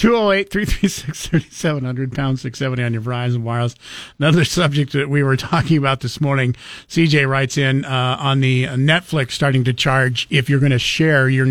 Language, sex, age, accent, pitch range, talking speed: English, male, 50-69, American, 130-165 Hz, 170 wpm